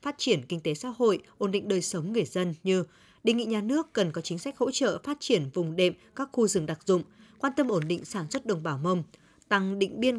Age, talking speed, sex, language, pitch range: 20-39, 260 wpm, female, Vietnamese, 175-230 Hz